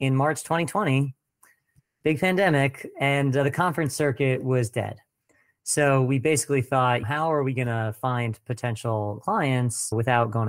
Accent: American